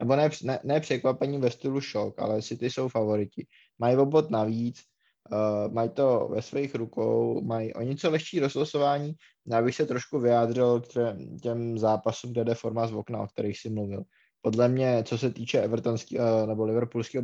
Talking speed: 180 wpm